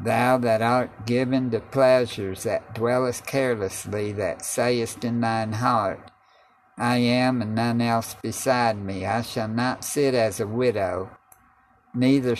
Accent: American